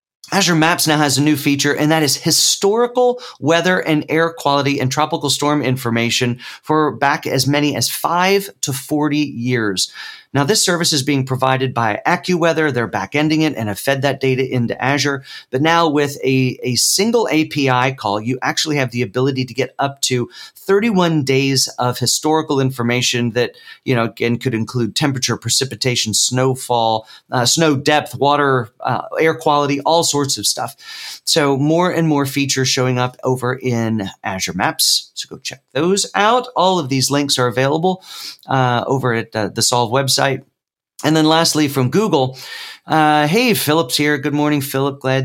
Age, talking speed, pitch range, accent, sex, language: 40-59, 170 wpm, 125-160 Hz, American, male, English